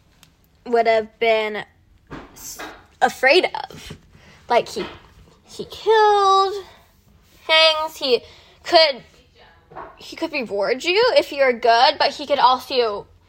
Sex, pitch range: female, 230-310 Hz